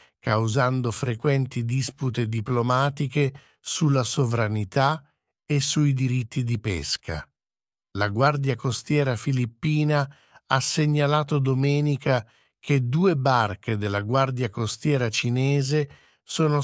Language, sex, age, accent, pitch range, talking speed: English, male, 50-69, Italian, 125-150 Hz, 95 wpm